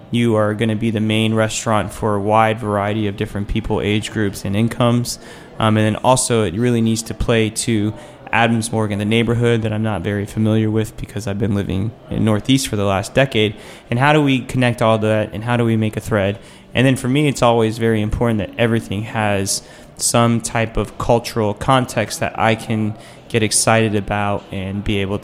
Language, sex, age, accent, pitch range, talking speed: English, male, 20-39, American, 110-130 Hz, 210 wpm